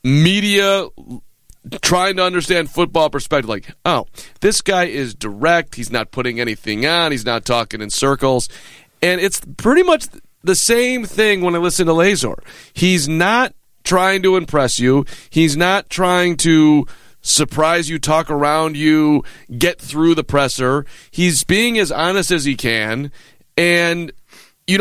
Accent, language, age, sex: American, English, 40-59, male